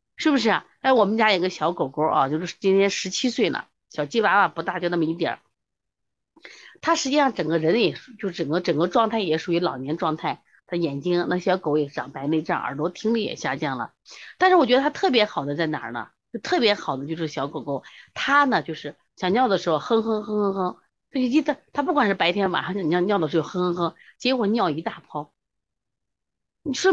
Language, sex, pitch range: Chinese, female, 160-250 Hz